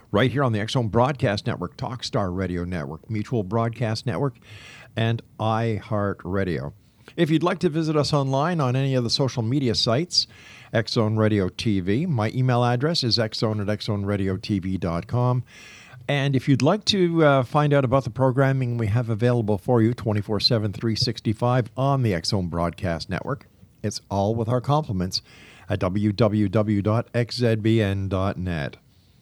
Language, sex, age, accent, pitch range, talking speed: English, male, 50-69, American, 105-130 Hz, 145 wpm